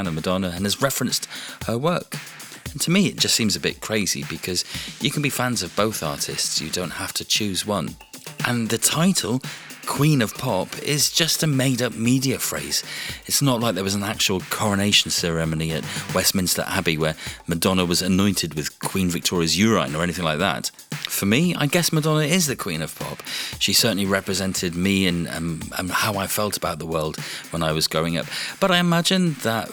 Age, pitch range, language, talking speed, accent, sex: 30-49, 90-130 Hz, English, 195 wpm, British, male